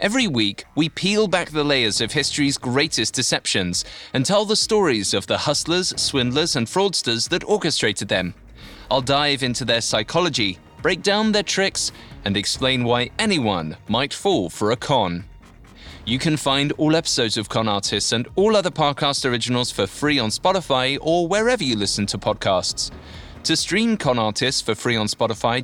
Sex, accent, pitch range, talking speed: male, British, 110-160 Hz, 170 wpm